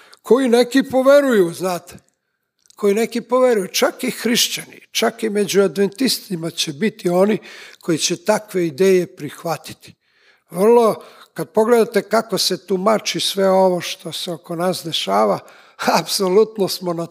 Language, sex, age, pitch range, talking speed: English, male, 60-79, 170-220 Hz, 135 wpm